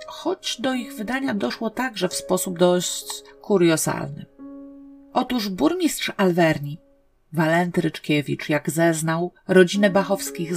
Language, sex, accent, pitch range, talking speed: Polish, female, native, 155-185 Hz, 110 wpm